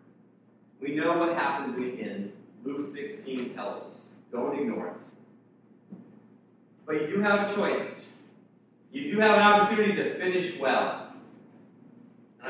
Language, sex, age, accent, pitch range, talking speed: English, male, 40-59, American, 130-205 Hz, 135 wpm